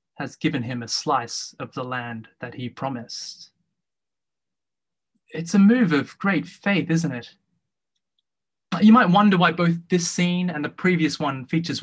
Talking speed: 155 wpm